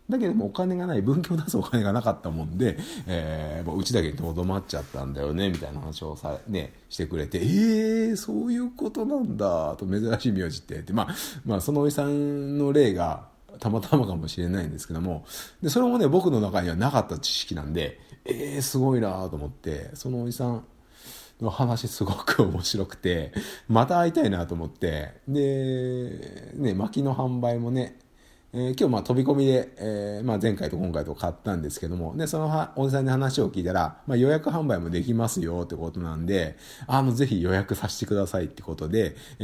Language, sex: Japanese, male